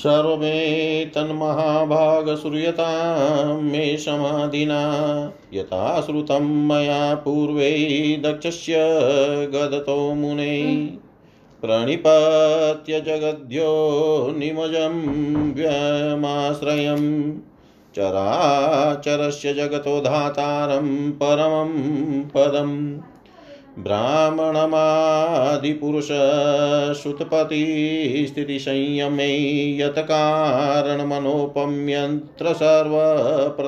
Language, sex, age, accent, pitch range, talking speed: Hindi, male, 40-59, native, 145-155 Hz, 40 wpm